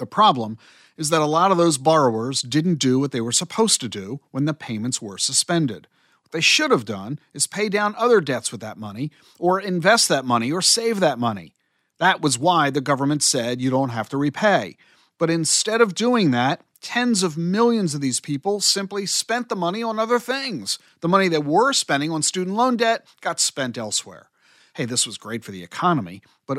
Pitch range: 125-200 Hz